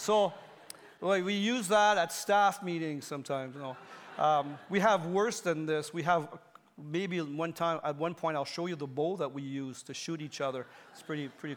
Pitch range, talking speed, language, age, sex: 200-270 Hz, 205 wpm, English, 40-59, male